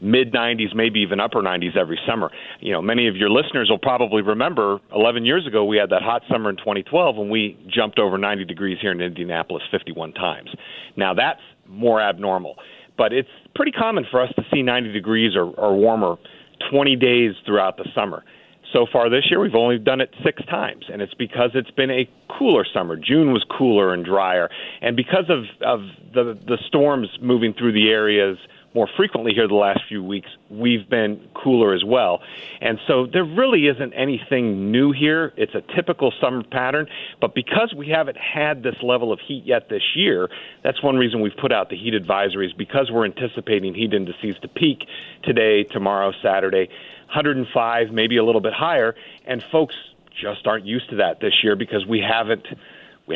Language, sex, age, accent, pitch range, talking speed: English, male, 40-59, American, 105-135 Hz, 190 wpm